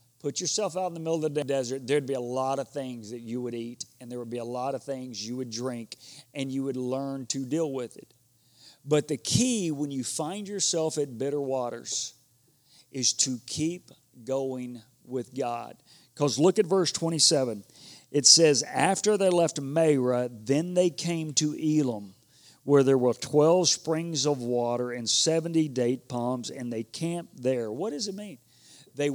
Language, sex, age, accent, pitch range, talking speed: English, male, 40-59, American, 125-155 Hz, 185 wpm